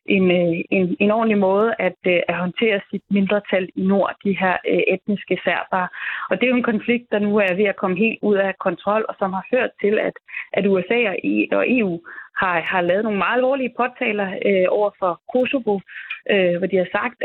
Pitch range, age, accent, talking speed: 180-210 Hz, 20-39, native, 195 wpm